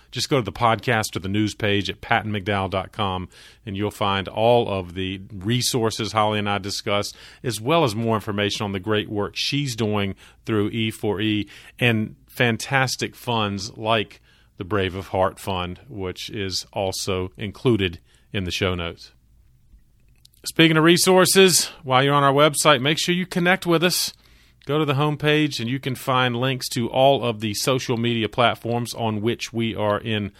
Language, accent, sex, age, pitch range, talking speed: English, American, male, 40-59, 100-130 Hz, 170 wpm